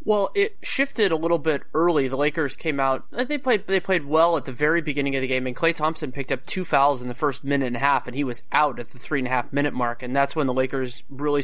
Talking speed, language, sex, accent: 290 wpm, English, male, American